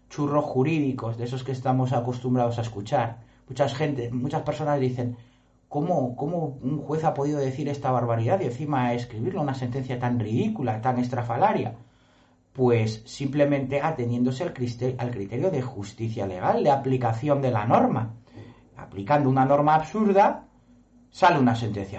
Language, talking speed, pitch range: Spanish, 140 wpm, 120-160 Hz